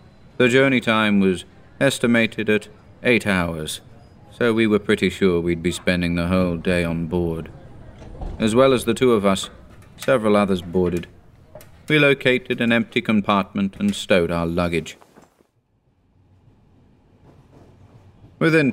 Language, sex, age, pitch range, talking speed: English, male, 40-59, 85-115 Hz, 130 wpm